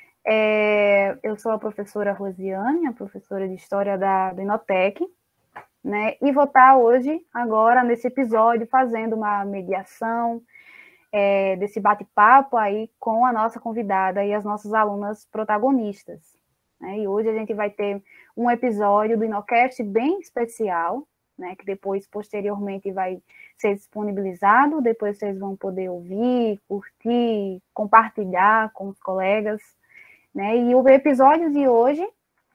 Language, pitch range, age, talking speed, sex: Portuguese, 200-255 Hz, 10-29, 125 wpm, female